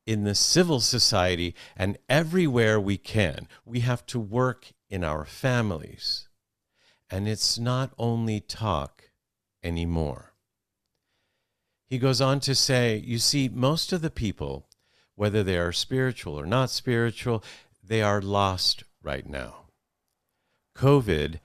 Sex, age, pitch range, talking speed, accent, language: male, 50-69, 95-125 Hz, 125 wpm, American, English